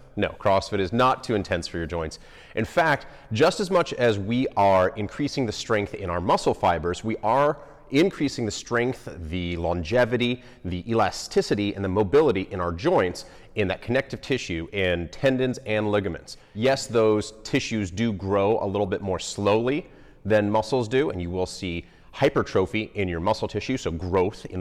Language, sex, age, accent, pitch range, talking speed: English, male, 30-49, American, 85-115 Hz, 175 wpm